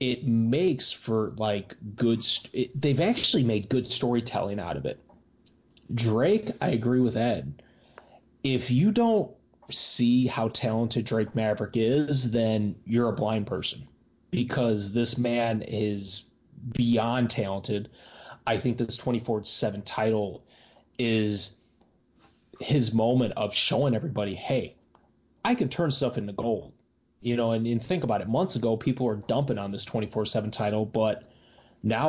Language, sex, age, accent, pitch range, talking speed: English, male, 30-49, American, 110-130 Hz, 140 wpm